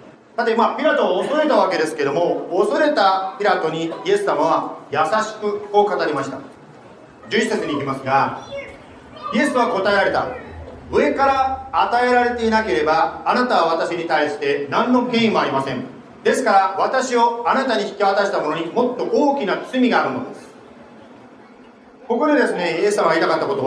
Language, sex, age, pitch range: Japanese, male, 40-59, 200-275 Hz